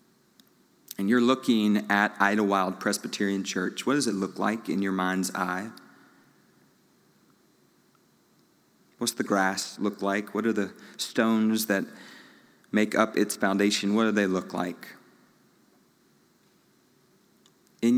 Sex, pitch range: male, 100-120 Hz